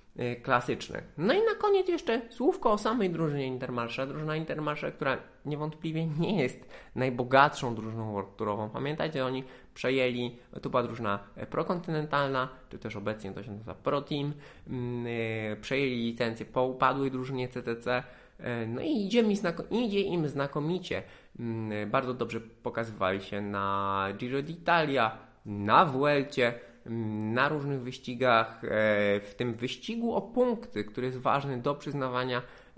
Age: 20-39